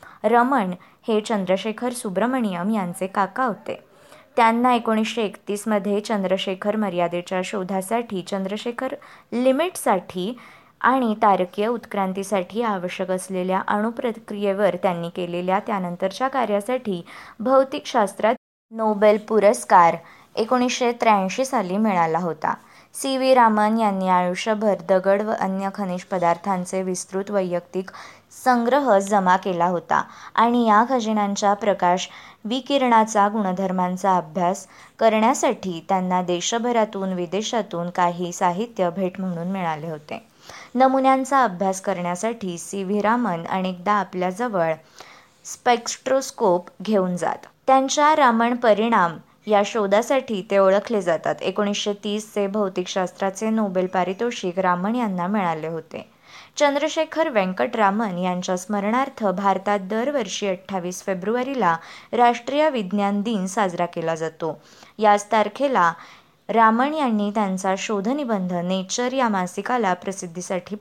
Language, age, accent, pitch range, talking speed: Marathi, 20-39, native, 185-230 Hz, 105 wpm